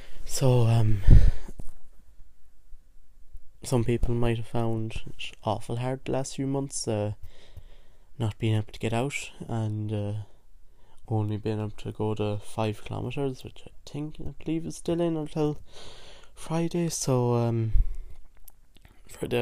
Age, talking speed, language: 20-39, 135 wpm, English